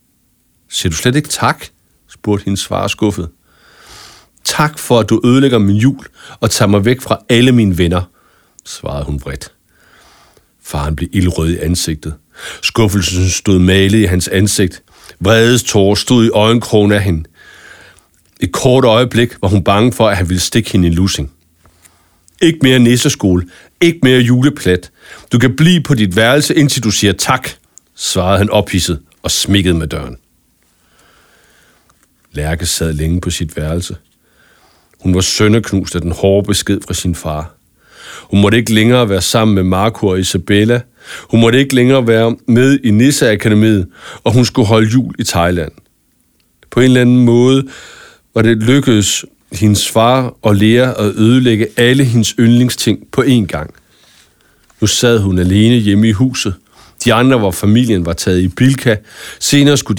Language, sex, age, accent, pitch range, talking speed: English, male, 60-79, Danish, 90-120 Hz, 160 wpm